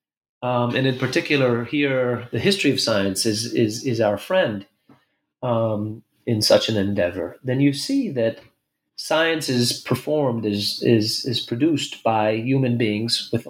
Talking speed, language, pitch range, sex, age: 150 wpm, English, 115-145 Hz, male, 30-49